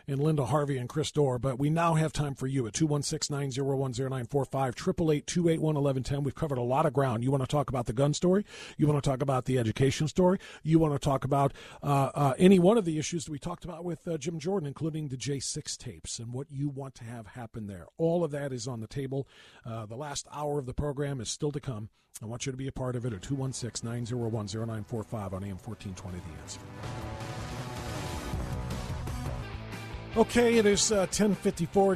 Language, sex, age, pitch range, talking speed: English, male, 40-59, 125-155 Hz, 255 wpm